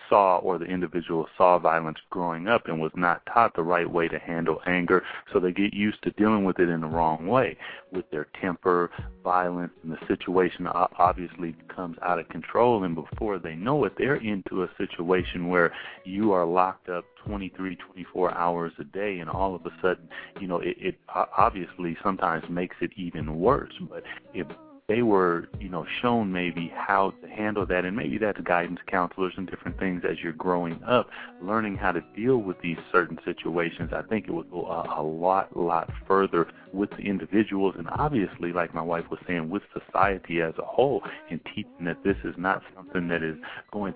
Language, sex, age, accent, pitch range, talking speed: English, male, 40-59, American, 85-95 Hz, 195 wpm